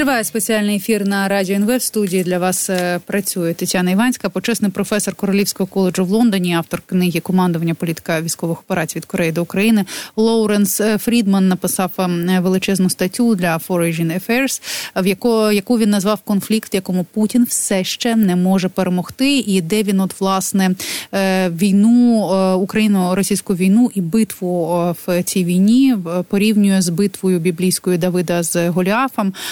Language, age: Ukrainian, 20-39